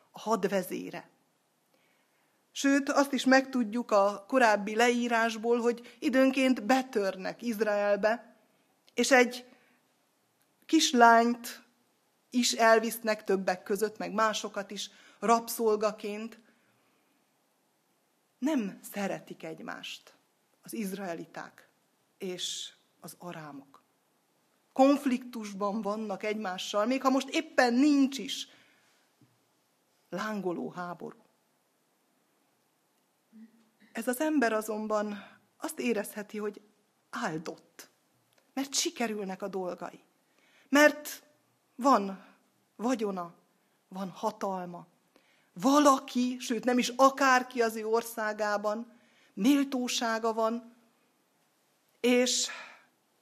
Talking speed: 80 wpm